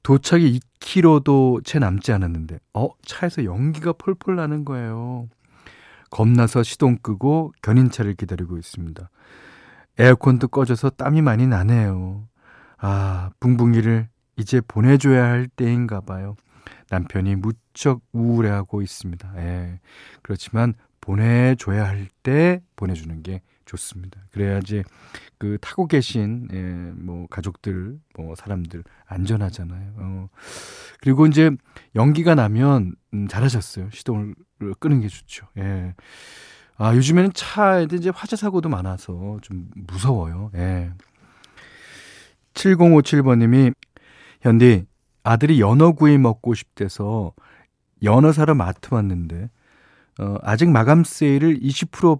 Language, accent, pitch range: Korean, native, 95-135 Hz